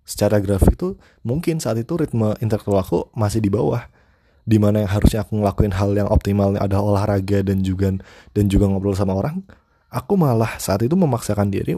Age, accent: 20-39, native